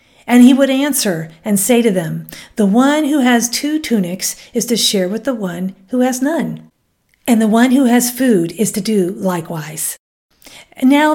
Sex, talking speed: female, 185 wpm